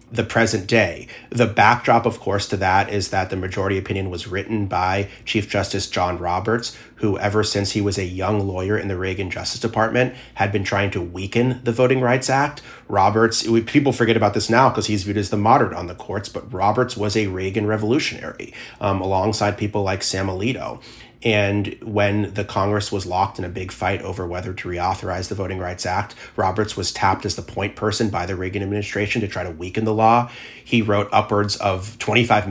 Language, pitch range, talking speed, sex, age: English, 95-115 Hz, 205 wpm, male, 30-49